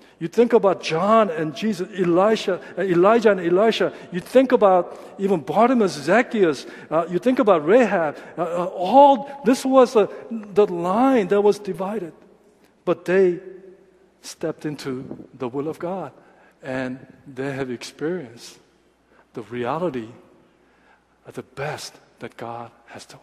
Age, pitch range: 50-69, 135-180 Hz